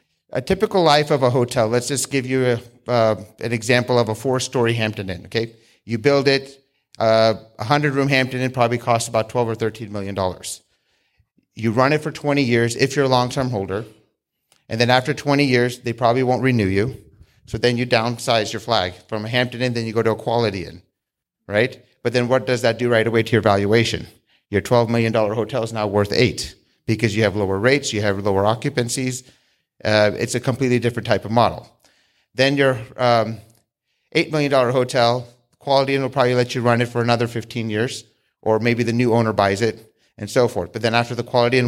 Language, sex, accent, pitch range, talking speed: English, male, American, 110-130 Hz, 205 wpm